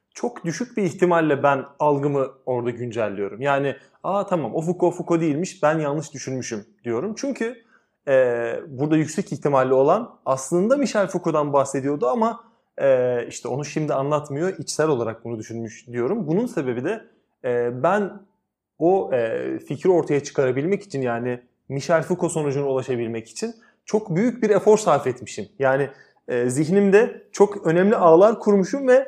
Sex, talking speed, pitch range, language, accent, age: male, 135 wpm, 135-185 Hz, Turkish, native, 30-49